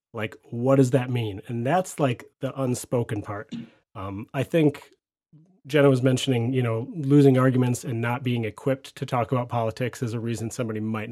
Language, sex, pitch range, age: English, male, 110-140 Hz, 30-49